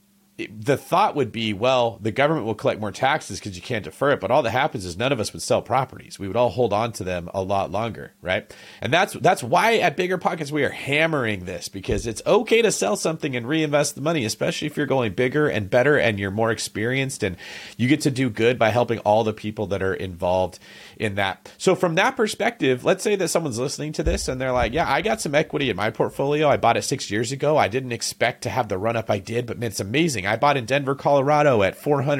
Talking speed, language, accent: 255 wpm, English, American